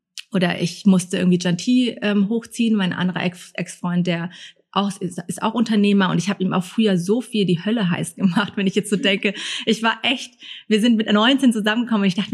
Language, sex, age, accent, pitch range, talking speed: German, female, 30-49, German, 185-215 Hz, 210 wpm